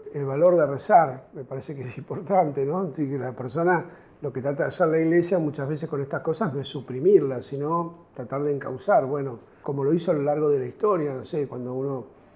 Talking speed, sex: 230 wpm, male